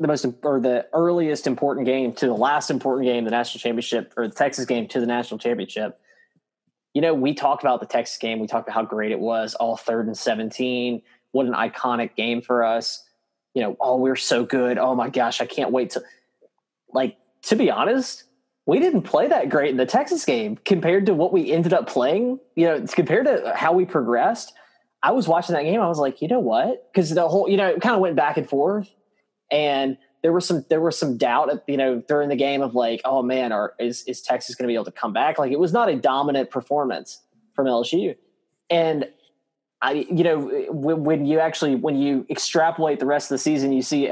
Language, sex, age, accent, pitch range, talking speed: English, male, 20-39, American, 125-160 Hz, 225 wpm